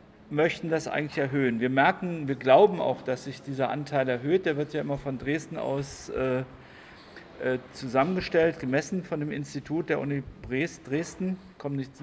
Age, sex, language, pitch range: 50-69, male, German, 125-155 Hz